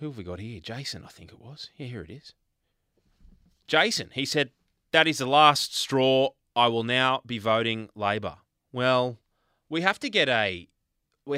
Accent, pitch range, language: Australian, 110-160 Hz, English